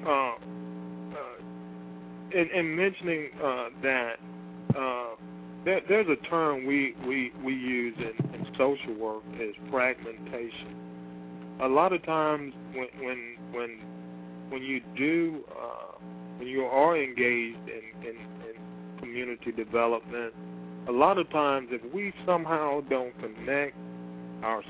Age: 40-59